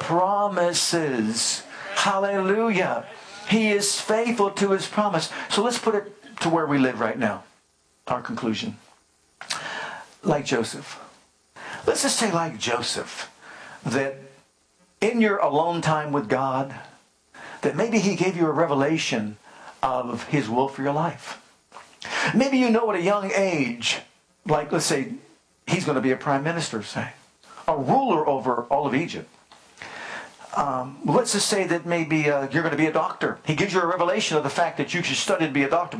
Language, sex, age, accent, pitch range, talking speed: English, male, 50-69, American, 145-200 Hz, 165 wpm